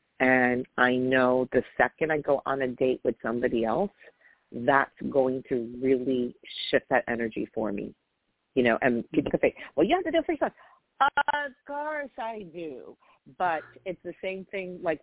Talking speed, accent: 180 wpm, American